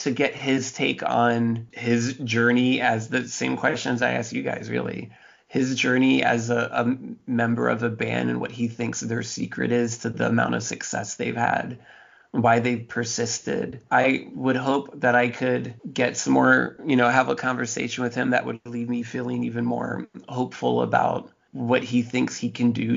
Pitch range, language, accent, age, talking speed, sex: 110-125 Hz, English, American, 20-39, 190 wpm, male